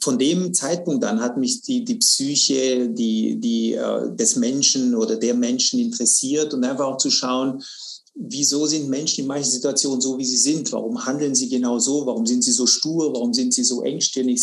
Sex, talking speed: male, 200 wpm